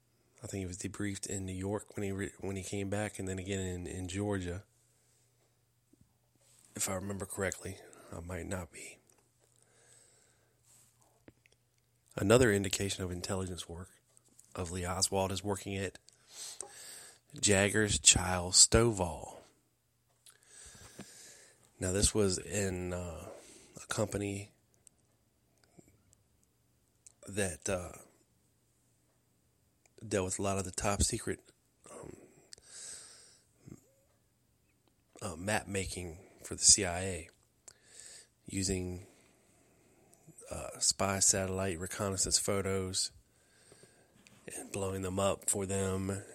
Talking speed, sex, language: 100 wpm, male, English